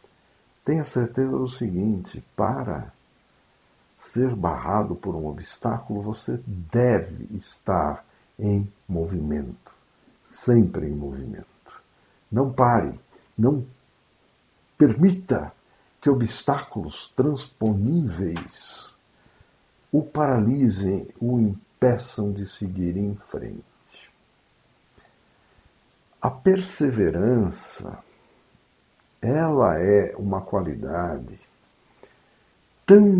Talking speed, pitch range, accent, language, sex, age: 70 wpm, 95-130 Hz, Brazilian, Portuguese, male, 60-79